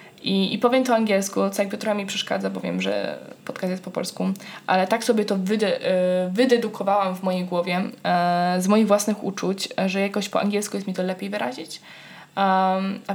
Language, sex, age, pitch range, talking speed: Polish, female, 10-29, 185-215 Hz, 195 wpm